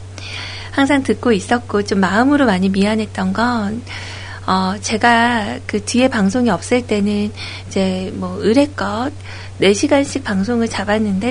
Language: Korean